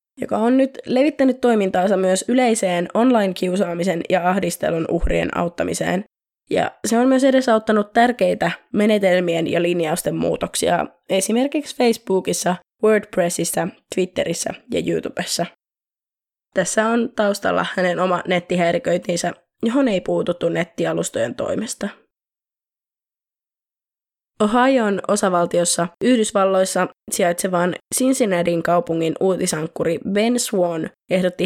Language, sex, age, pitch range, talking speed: Finnish, female, 20-39, 175-225 Hz, 95 wpm